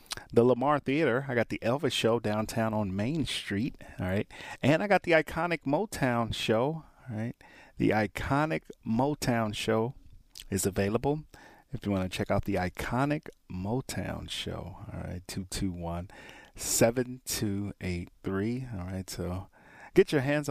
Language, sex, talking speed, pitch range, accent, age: English, male, 160 wpm, 100-130 Hz, American, 30-49